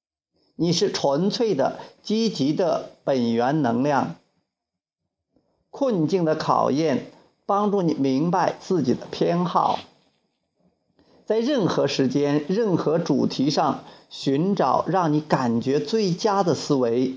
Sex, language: male, Chinese